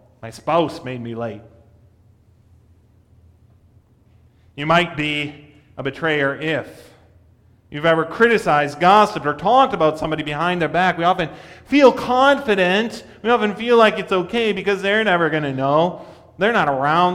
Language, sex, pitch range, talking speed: English, male, 110-145 Hz, 145 wpm